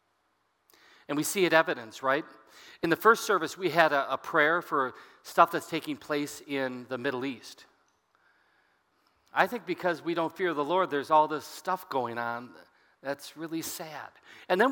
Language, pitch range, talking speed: English, 140-180 Hz, 175 wpm